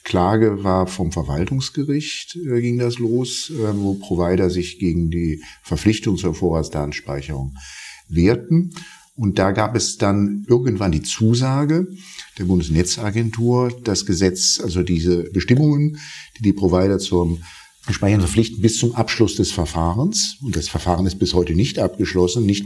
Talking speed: 140 wpm